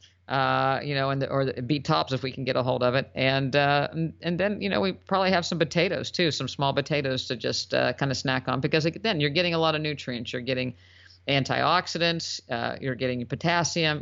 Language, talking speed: English, 230 wpm